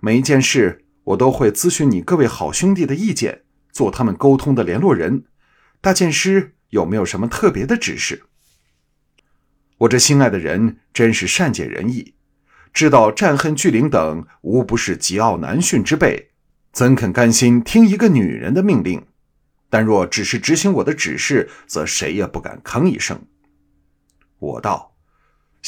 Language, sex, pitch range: Chinese, male, 90-135 Hz